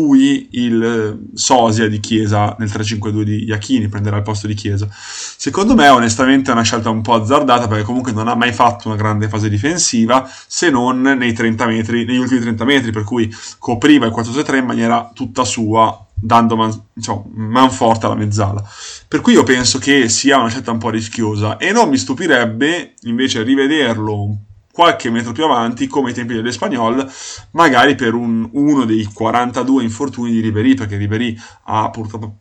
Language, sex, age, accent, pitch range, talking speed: Italian, male, 20-39, native, 110-130 Hz, 175 wpm